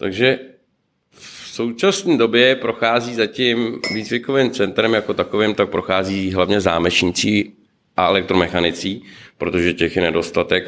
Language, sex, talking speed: Czech, male, 110 wpm